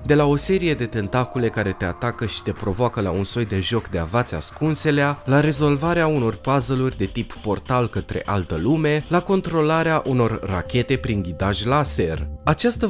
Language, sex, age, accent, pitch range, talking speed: Romanian, male, 20-39, native, 100-145 Hz, 175 wpm